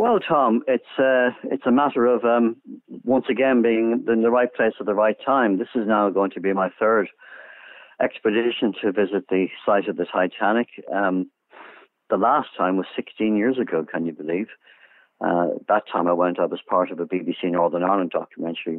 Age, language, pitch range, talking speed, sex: 50-69, English, 90-110 Hz, 190 wpm, male